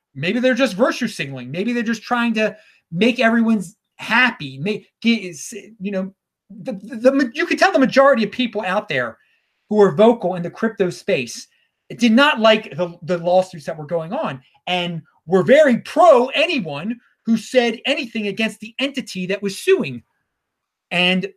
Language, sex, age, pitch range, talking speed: English, male, 30-49, 165-225 Hz, 170 wpm